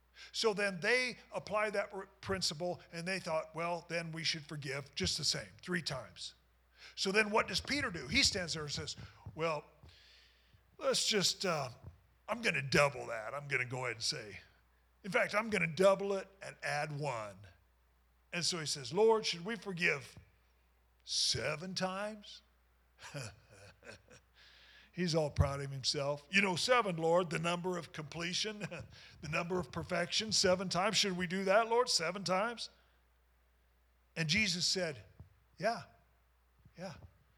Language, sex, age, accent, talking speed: English, male, 50-69, American, 155 wpm